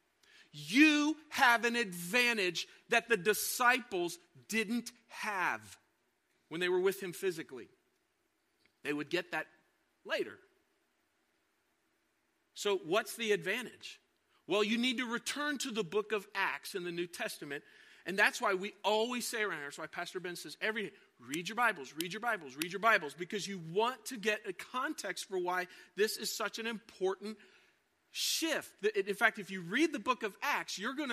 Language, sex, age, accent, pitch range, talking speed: English, male, 40-59, American, 190-290 Hz, 170 wpm